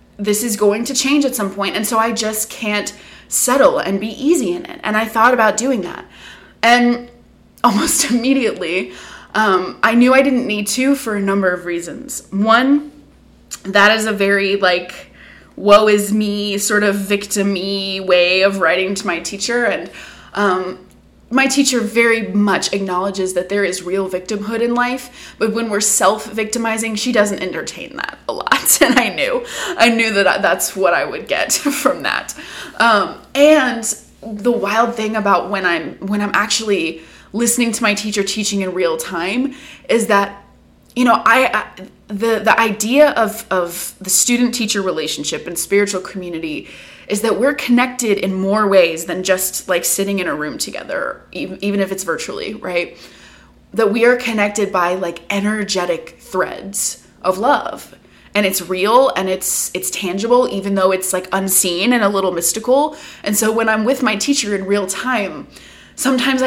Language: English